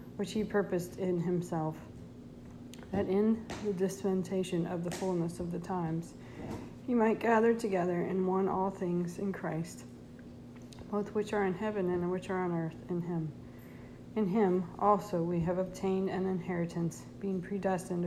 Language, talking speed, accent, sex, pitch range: English, 155 wpm, American, female, 175-195 Hz